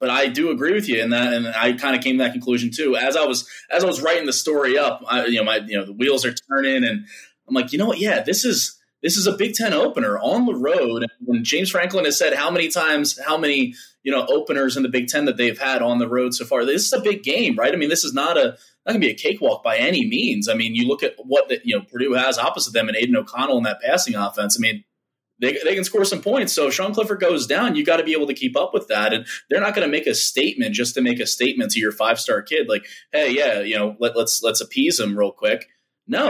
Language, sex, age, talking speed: English, male, 20-39, 290 wpm